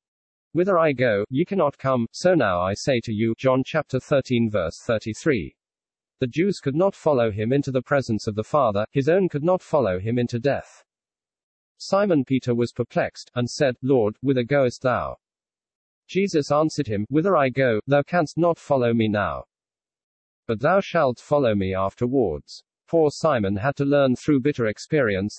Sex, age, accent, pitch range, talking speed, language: male, 40-59, British, 115-145 Hz, 175 wpm, English